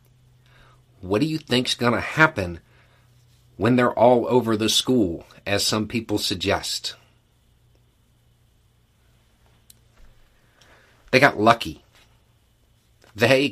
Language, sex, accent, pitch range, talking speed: English, male, American, 95-120 Hz, 90 wpm